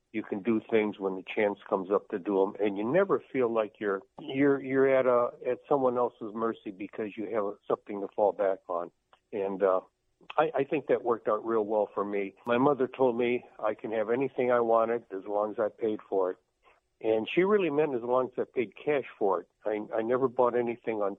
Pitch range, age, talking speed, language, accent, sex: 100-120 Hz, 60-79, 230 wpm, English, American, male